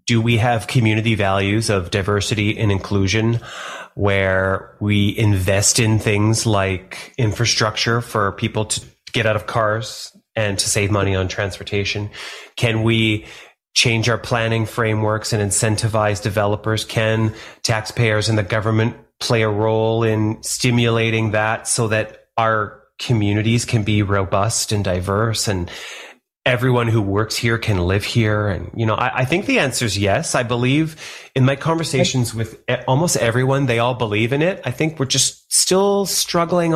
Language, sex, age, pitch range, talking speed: English, male, 30-49, 105-125 Hz, 155 wpm